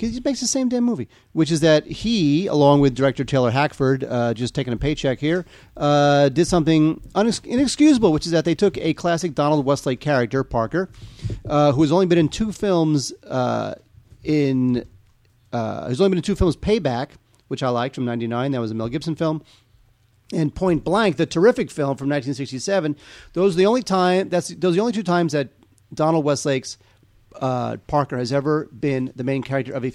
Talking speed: 200 wpm